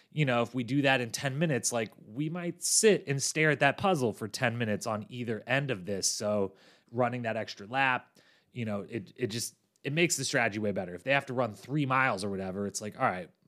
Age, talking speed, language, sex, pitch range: 30-49, 245 wpm, English, male, 105-130 Hz